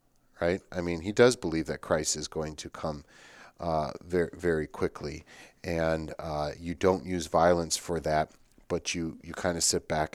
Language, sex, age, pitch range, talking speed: English, male, 40-59, 80-95 Hz, 185 wpm